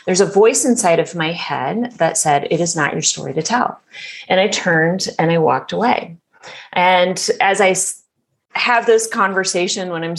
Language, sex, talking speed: English, female, 185 wpm